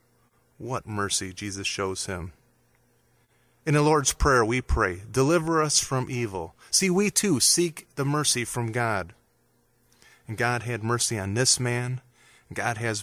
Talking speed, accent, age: 150 wpm, American, 30-49